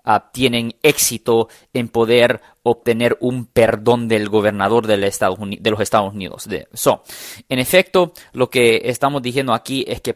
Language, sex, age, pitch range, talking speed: Spanish, male, 30-49, 115-160 Hz, 130 wpm